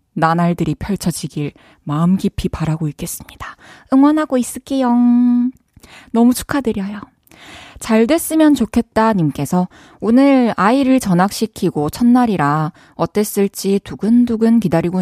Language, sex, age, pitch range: Korean, female, 20-39, 170-240 Hz